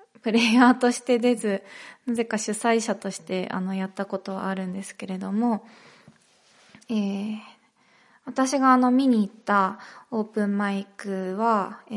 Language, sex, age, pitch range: Japanese, female, 20-39, 200-245 Hz